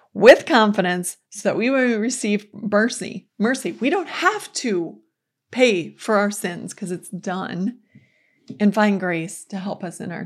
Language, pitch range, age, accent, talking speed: English, 180-205 Hz, 30-49, American, 165 wpm